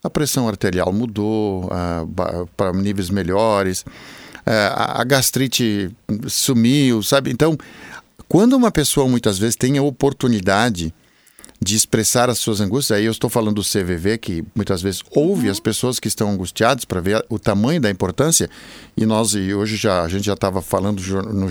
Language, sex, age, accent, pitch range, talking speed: Portuguese, male, 50-69, Brazilian, 100-140 Hz, 160 wpm